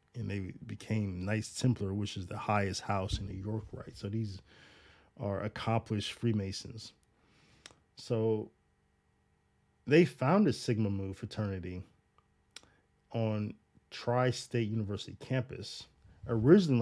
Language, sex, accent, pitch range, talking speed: English, male, American, 95-120 Hz, 110 wpm